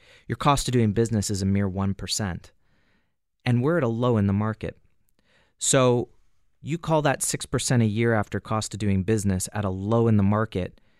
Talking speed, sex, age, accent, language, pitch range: 190 wpm, male, 30-49, American, English, 100-125 Hz